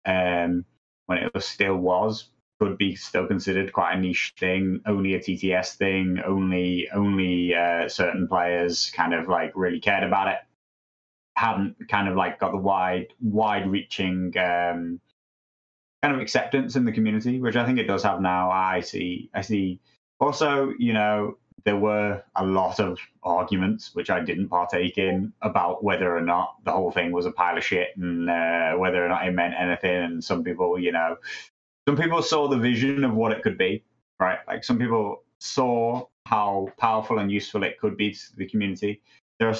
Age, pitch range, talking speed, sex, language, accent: 20-39, 90-105 Hz, 185 wpm, male, English, British